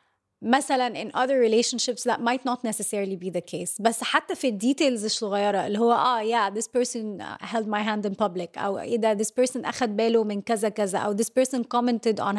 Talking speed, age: 145 wpm, 20-39